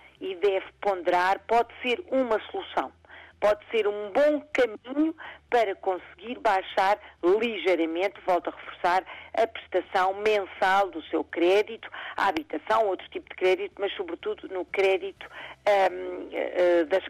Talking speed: 125 wpm